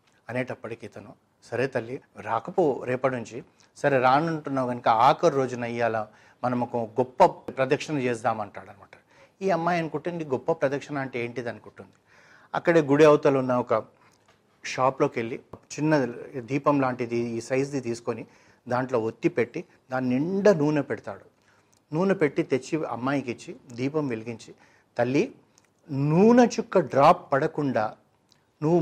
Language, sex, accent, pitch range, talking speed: Telugu, male, native, 120-150 Hz, 115 wpm